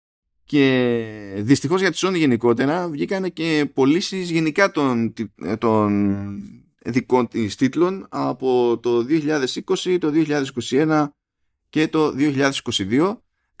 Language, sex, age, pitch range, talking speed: Greek, male, 20-39, 105-150 Hz, 105 wpm